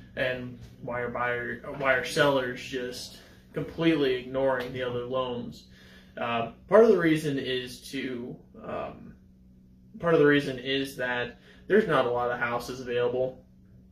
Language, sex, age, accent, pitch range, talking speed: English, male, 20-39, American, 120-135 Hz, 145 wpm